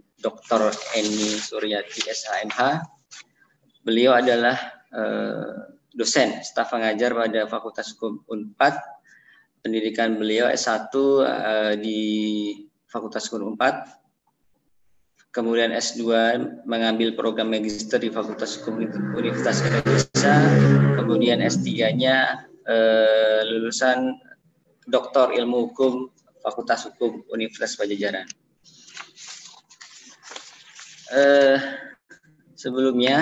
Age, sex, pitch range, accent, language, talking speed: 20-39, male, 105-125 Hz, native, Indonesian, 80 wpm